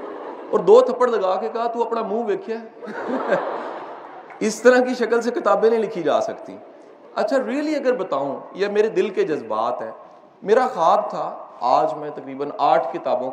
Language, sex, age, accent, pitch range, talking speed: English, male, 40-59, Indian, 195-275 Hz, 175 wpm